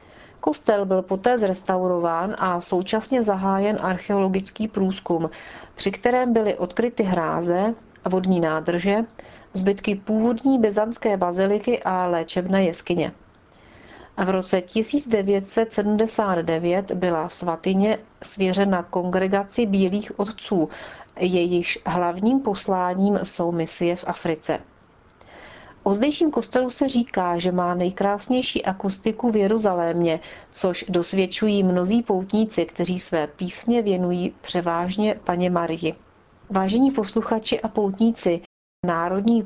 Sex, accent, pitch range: female, native, 175-215 Hz